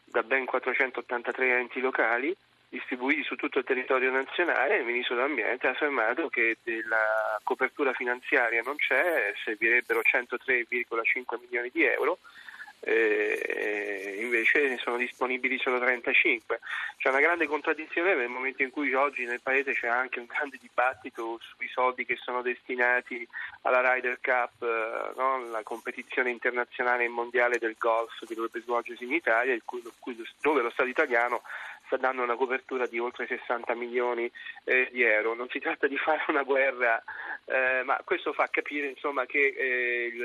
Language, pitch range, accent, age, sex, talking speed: Italian, 120-140 Hz, native, 30-49, male, 150 wpm